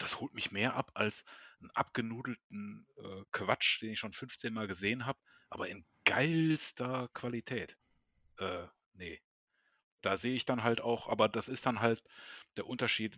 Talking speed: 165 wpm